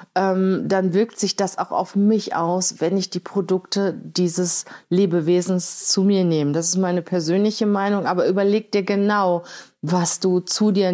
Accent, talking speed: German, 170 wpm